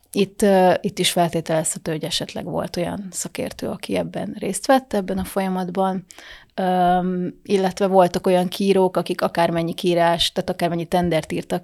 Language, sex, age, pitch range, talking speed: Hungarian, female, 30-49, 175-195 Hz, 145 wpm